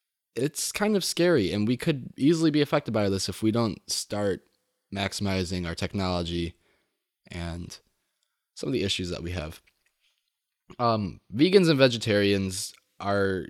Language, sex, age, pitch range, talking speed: English, male, 20-39, 100-130 Hz, 140 wpm